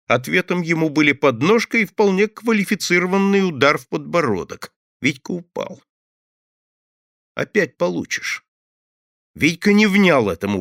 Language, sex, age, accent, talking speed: Russian, male, 50-69, native, 100 wpm